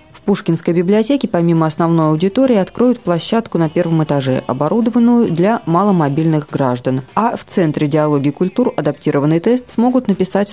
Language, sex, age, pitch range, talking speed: Russian, female, 20-39, 145-210 Hz, 130 wpm